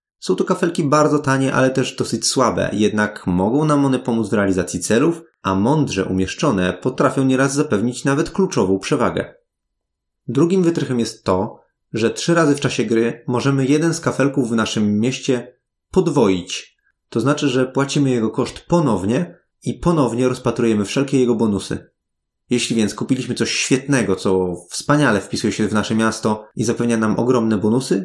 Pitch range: 110-145 Hz